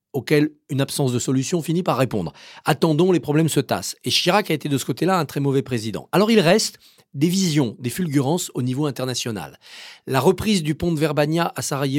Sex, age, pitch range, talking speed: male, 40-59, 130-190 Hz, 210 wpm